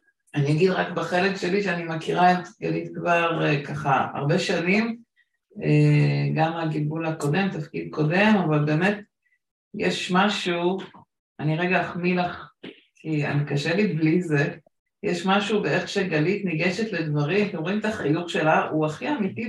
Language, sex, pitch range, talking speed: Hebrew, female, 155-195 Hz, 150 wpm